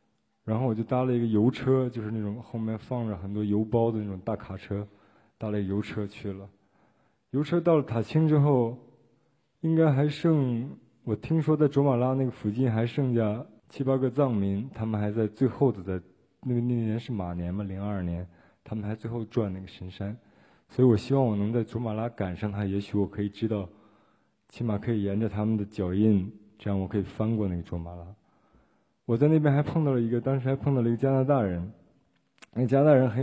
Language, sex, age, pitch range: Chinese, male, 20-39, 105-130 Hz